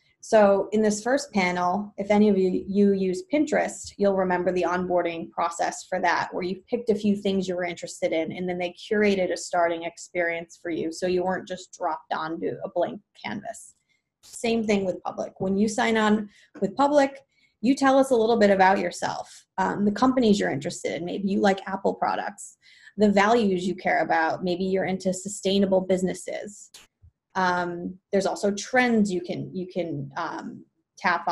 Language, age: English, 20-39